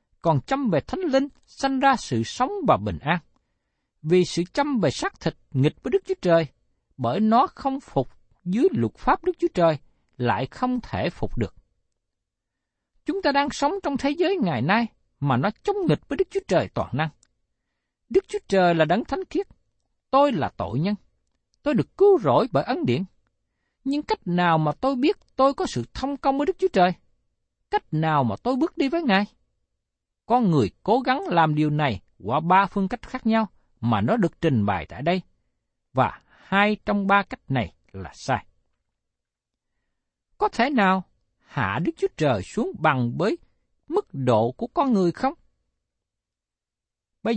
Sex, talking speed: male, 180 wpm